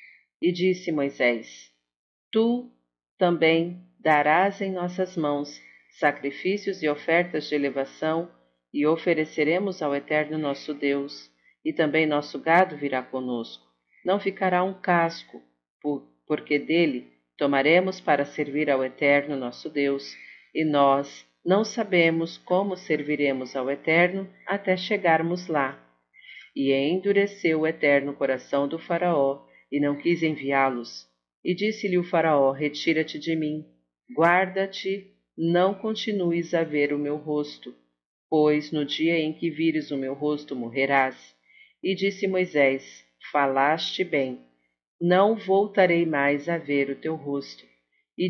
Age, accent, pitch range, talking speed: 50-69, Brazilian, 140-175 Hz, 125 wpm